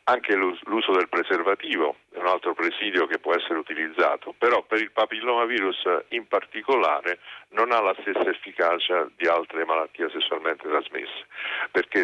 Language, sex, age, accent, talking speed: Italian, male, 50-69, native, 145 wpm